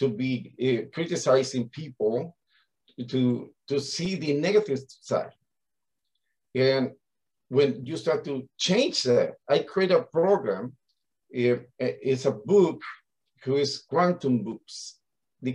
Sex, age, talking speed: male, 50-69, 115 wpm